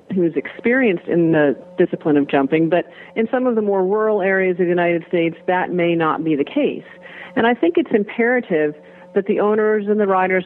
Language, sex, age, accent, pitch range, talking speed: English, female, 40-59, American, 155-190 Hz, 205 wpm